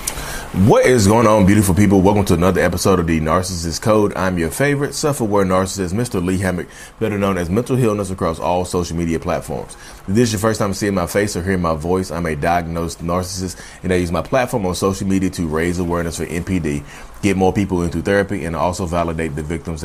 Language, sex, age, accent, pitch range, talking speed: English, male, 30-49, American, 85-110 Hz, 220 wpm